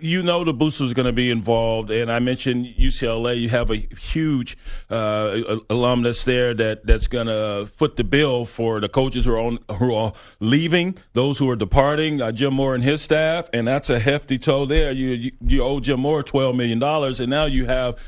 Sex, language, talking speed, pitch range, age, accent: male, English, 210 wpm, 115-140 Hz, 40-59, American